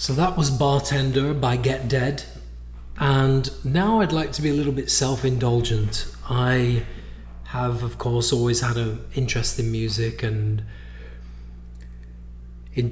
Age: 30-49